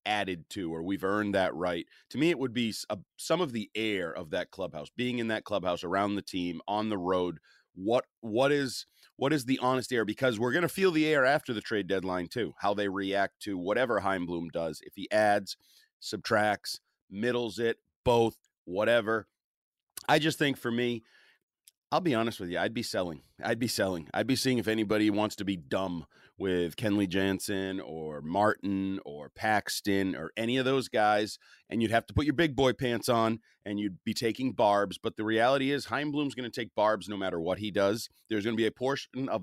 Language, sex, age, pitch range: English, male, 30-49, 95-115 Hz